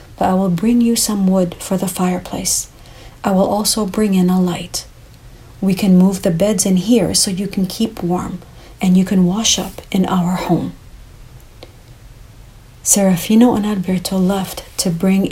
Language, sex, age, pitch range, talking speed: English, female, 40-59, 165-195 Hz, 165 wpm